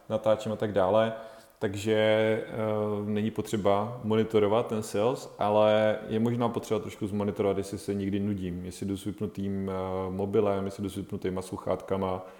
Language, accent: Czech, native